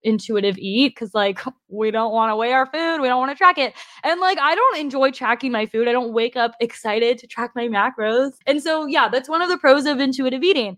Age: 10-29